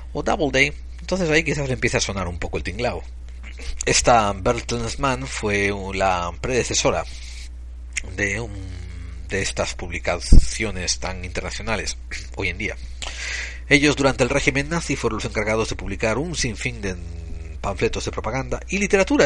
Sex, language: male, Spanish